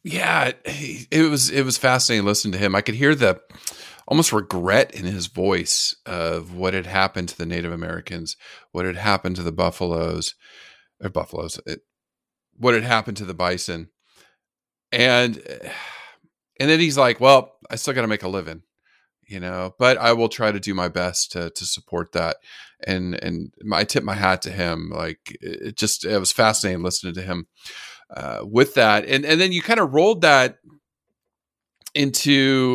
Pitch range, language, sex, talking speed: 90-120 Hz, English, male, 180 wpm